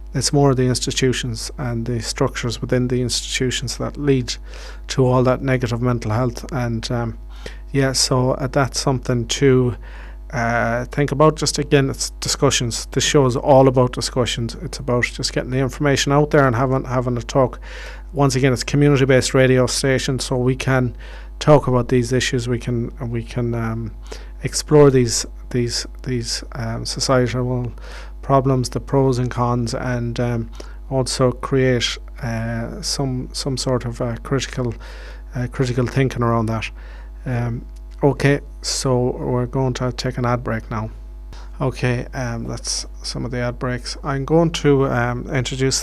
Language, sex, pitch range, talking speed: English, male, 120-135 Hz, 160 wpm